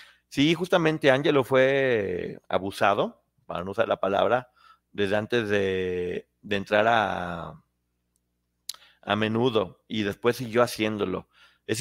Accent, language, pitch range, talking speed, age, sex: Mexican, Spanish, 105-140 Hz, 115 wpm, 40-59, male